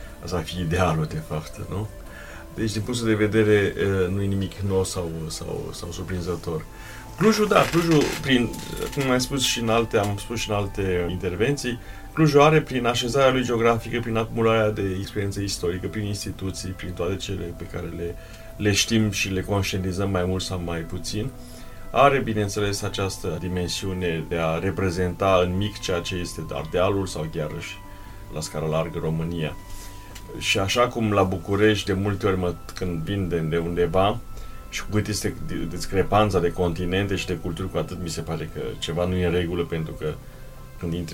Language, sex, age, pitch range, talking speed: Romanian, male, 30-49, 85-105 Hz, 180 wpm